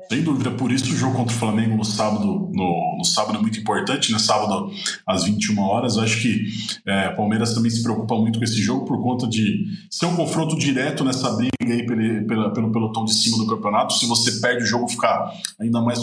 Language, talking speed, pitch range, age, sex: Portuguese, 225 wpm, 110-130 Hz, 20-39, male